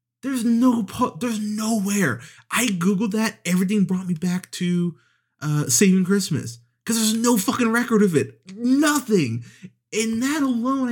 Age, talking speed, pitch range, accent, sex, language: 30-49, 150 wpm, 140-210 Hz, American, male, English